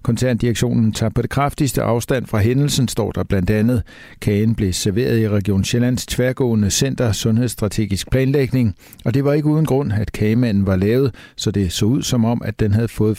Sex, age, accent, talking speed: male, 60-79, native, 190 wpm